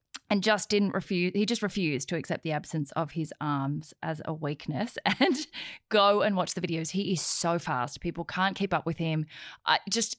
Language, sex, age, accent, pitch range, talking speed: English, female, 10-29, Australian, 160-200 Hz, 205 wpm